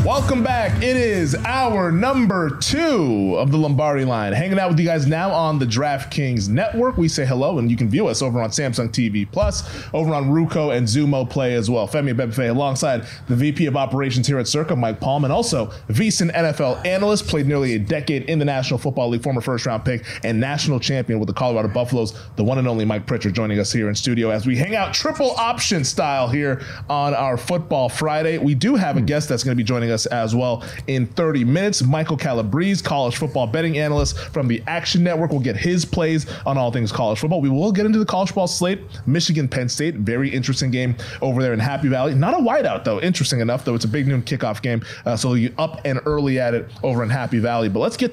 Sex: male